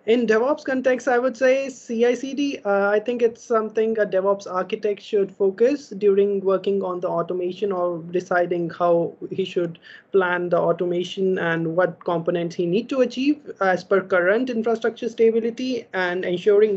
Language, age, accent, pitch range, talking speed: English, 20-39, Indian, 190-230 Hz, 155 wpm